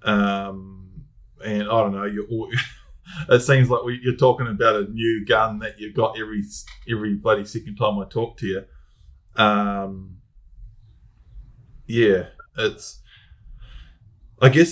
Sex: male